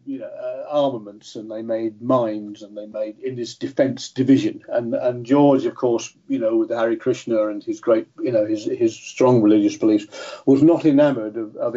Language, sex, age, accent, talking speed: English, male, 50-69, British, 205 wpm